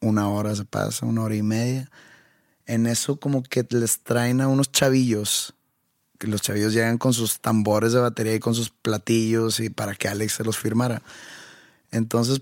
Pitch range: 110-135 Hz